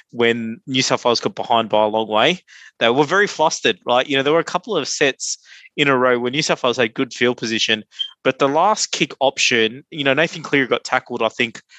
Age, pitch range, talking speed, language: 20-39, 120-150 Hz, 240 wpm, English